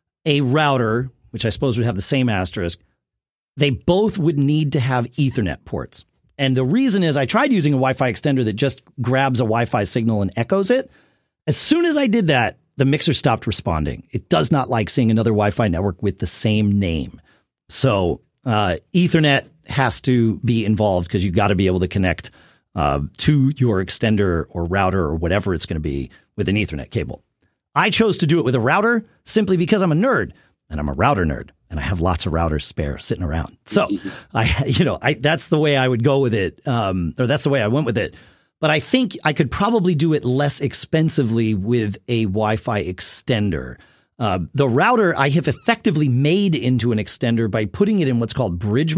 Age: 40-59